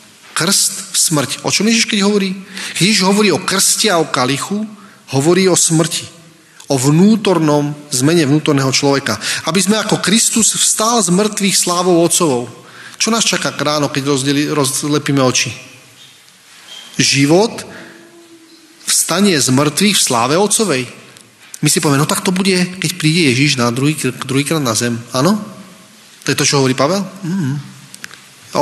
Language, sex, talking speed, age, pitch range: Slovak, male, 150 wpm, 30-49, 140-195 Hz